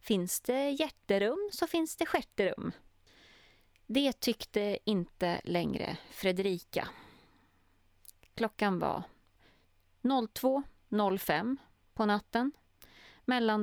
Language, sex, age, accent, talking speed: Swedish, female, 30-49, native, 80 wpm